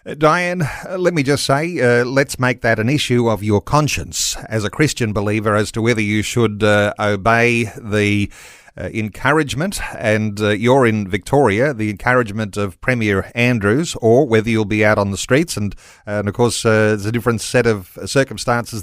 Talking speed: 190 wpm